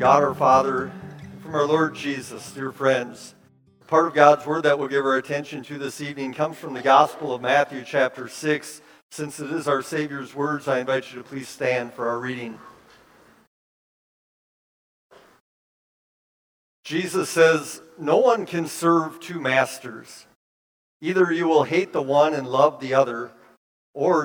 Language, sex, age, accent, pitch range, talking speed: English, male, 50-69, American, 130-155 Hz, 155 wpm